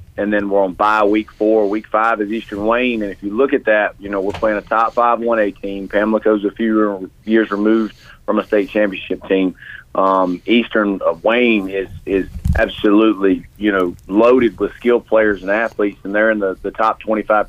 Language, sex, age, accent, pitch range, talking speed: English, male, 30-49, American, 100-110 Hz, 200 wpm